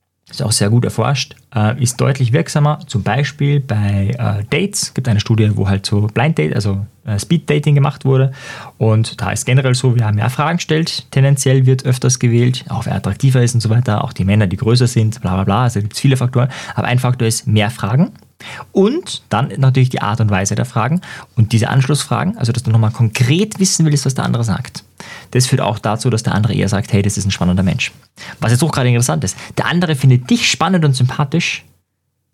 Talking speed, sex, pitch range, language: 220 wpm, male, 105-140 Hz, German